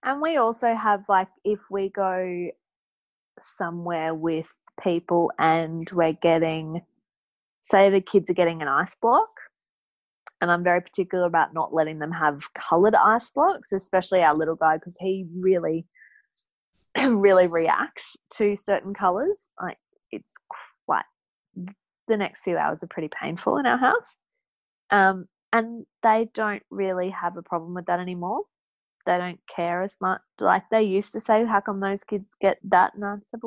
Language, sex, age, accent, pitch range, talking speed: English, female, 20-39, Australian, 175-215 Hz, 160 wpm